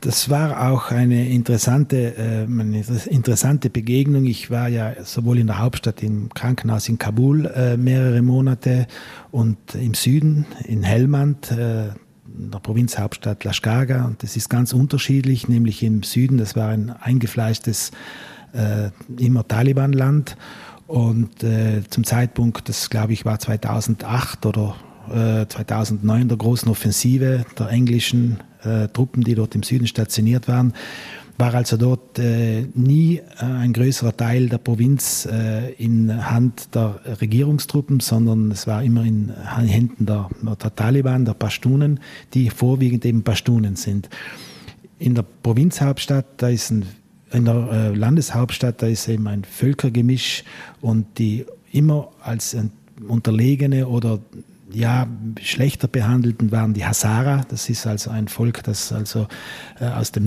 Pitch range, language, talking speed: 110-125 Hz, German, 140 wpm